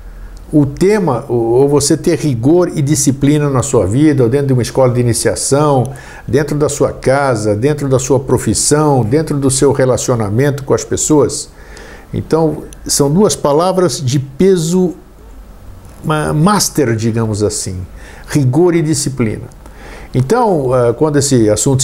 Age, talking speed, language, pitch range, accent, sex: 60-79, 130 wpm, Portuguese, 125-160 Hz, Brazilian, male